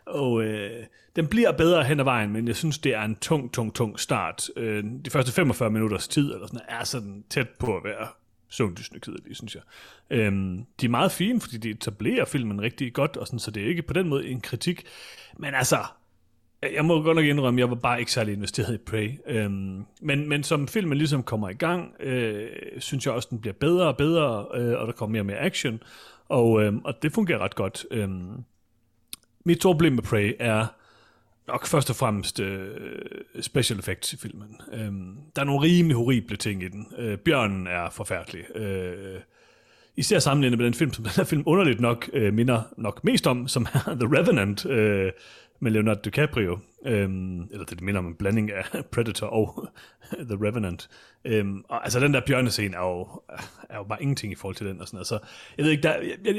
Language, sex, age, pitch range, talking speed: Danish, male, 30-49, 105-145 Hz, 205 wpm